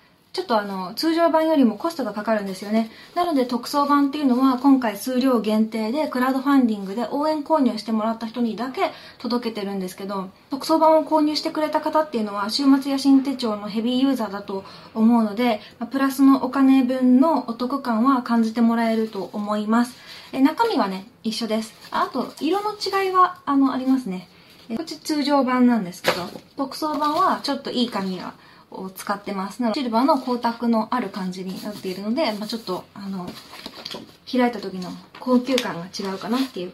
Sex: female